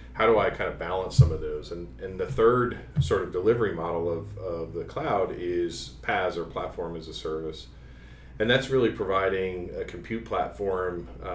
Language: English